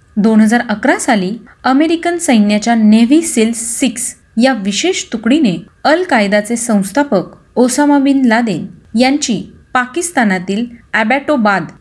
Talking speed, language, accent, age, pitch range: 105 wpm, Marathi, native, 30-49, 205-280 Hz